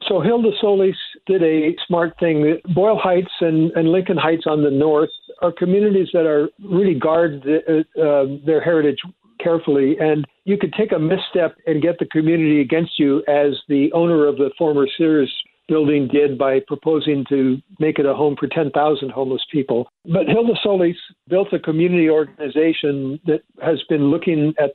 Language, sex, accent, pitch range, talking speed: English, male, American, 145-170 Hz, 170 wpm